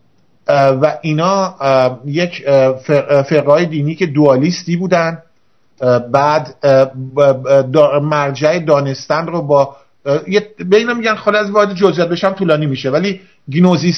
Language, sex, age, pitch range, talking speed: English, male, 50-69, 140-175 Hz, 95 wpm